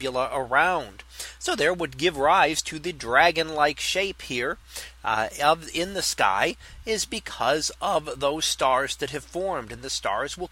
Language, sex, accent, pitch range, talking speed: English, male, American, 130-170 Hz, 165 wpm